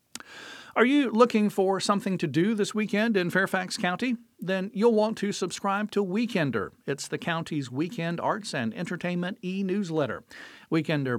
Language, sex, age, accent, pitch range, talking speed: English, male, 50-69, American, 145-195 Hz, 150 wpm